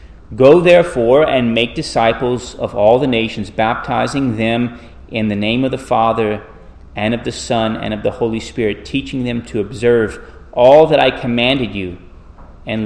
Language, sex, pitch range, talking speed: English, male, 90-125 Hz, 170 wpm